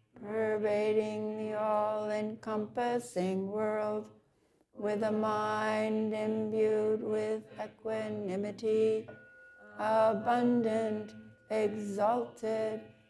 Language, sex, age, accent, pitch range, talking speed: English, female, 60-79, American, 155-215 Hz, 55 wpm